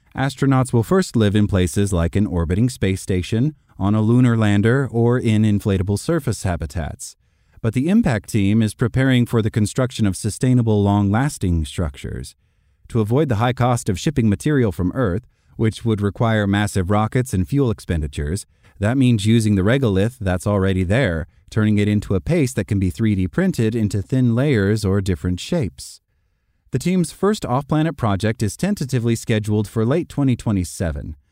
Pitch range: 100-125 Hz